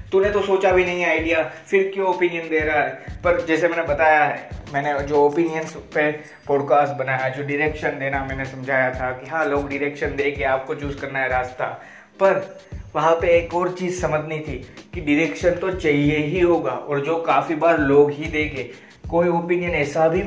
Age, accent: 20-39, native